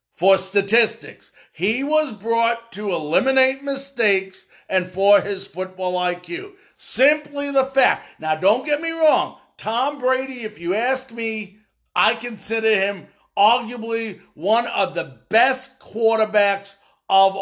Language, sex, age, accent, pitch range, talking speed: English, male, 50-69, American, 195-265 Hz, 125 wpm